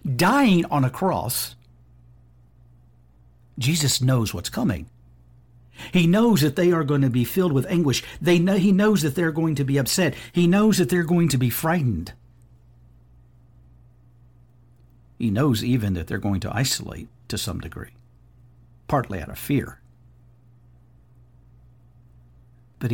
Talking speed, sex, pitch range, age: 135 wpm, male, 110-130 Hz, 60-79